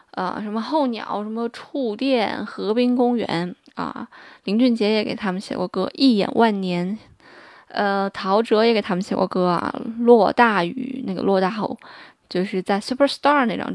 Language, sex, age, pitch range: Chinese, female, 20-39, 210-245 Hz